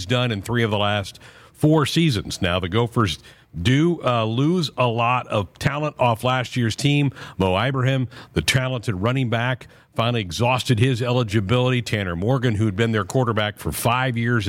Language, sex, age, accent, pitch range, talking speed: English, male, 50-69, American, 105-125 Hz, 175 wpm